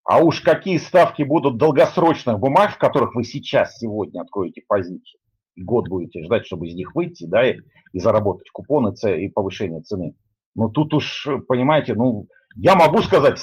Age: 50-69